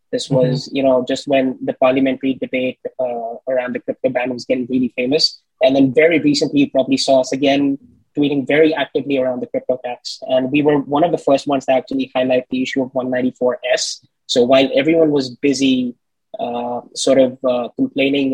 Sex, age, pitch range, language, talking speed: male, 20-39, 125-150 Hz, English, 195 wpm